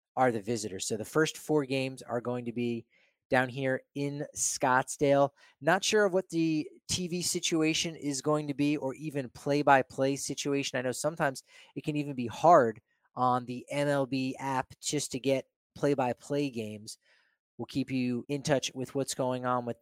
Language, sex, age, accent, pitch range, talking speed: English, male, 30-49, American, 130-160 Hz, 175 wpm